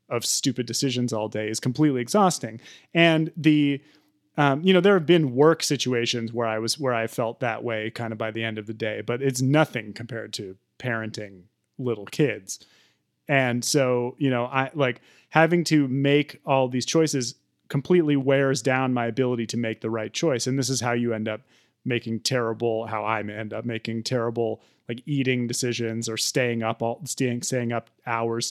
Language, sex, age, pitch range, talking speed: English, male, 30-49, 115-140 Hz, 190 wpm